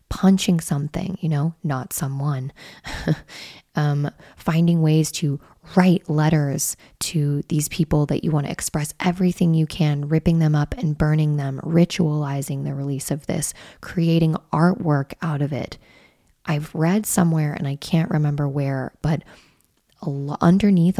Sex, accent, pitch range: female, American, 145-165 Hz